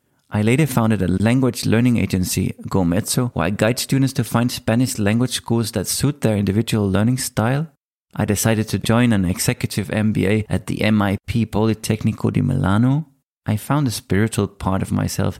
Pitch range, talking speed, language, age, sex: 105-130 Hz, 170 wpm, English, 30-49, male